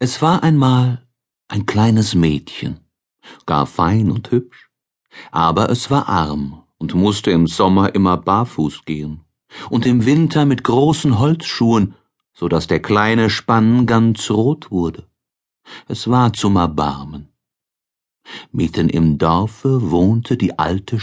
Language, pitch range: German, 90-125 Hz